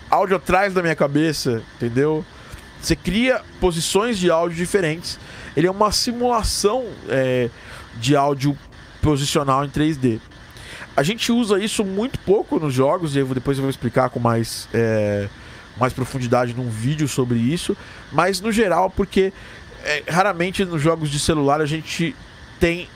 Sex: male